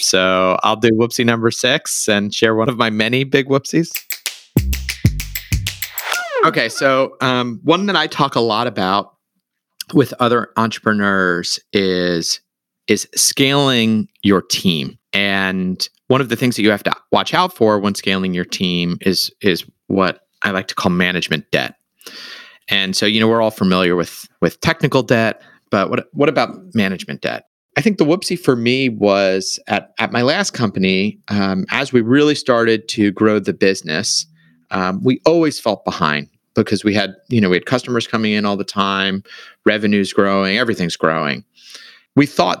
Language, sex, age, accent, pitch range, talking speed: English, male, 30-49, American, 95-125 Hz, 170 wpm